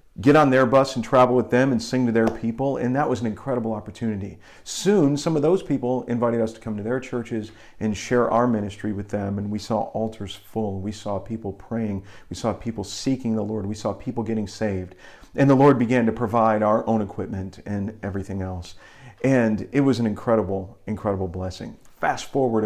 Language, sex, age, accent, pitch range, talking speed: English, male, 40-59, American, 105-125 Hz, 205 wpm